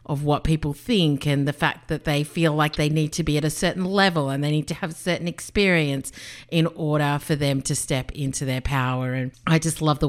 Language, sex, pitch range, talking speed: English, female, 145-170 Hz, 245 wpm